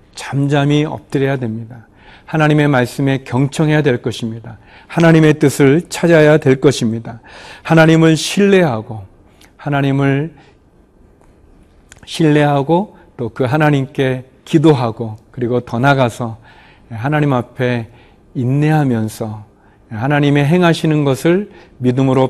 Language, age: Korean, 40-59